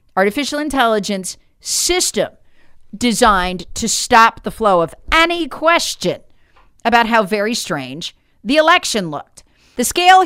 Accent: American